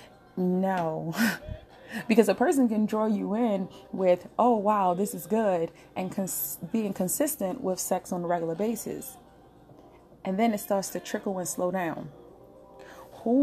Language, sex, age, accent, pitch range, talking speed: English, female, 30-49, American, 170-215 Hz, 150 wpm